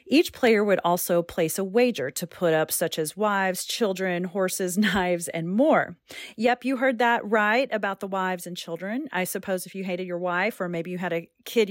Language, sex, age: English, female, 30-49